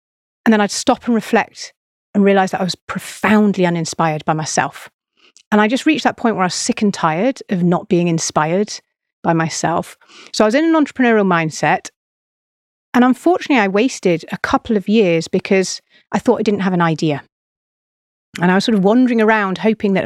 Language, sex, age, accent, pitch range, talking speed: English, female, 30-49, British, 175-225 Hz, 195 wpm